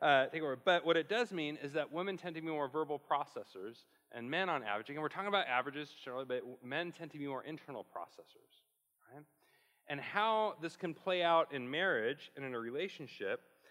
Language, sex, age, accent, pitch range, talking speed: English, male, 30-49, American, 140-210 Hz, 210 wpm